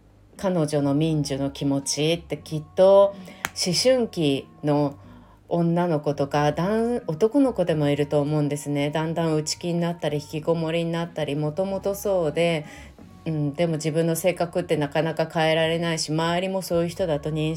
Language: Japanese